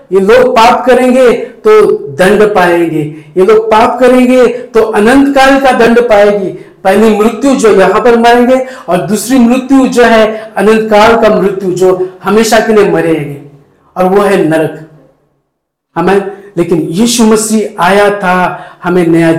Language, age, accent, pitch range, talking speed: Hindi, 50-69, native, 185-235 Hz, 150 wpm